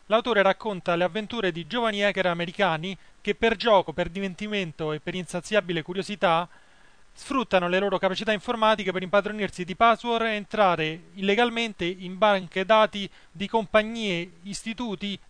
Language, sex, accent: Italian, male, native